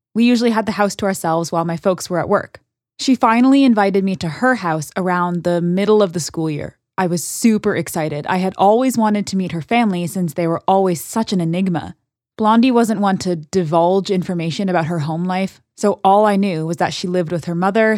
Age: 20-39